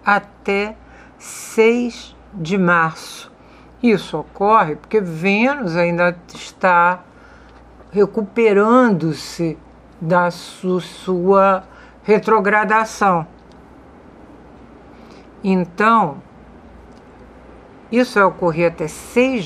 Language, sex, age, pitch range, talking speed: Portuguese, female, 60-79, 175-215 Hz, 60 wpm